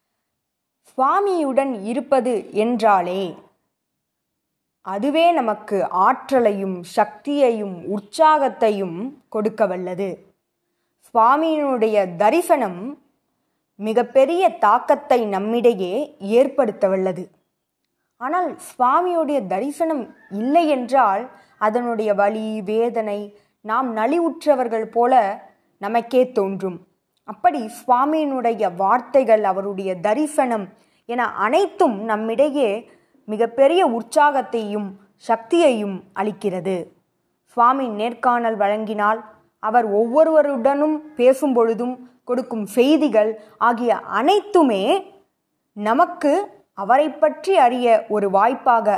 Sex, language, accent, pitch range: female, Tamil, native, 210-285 Hz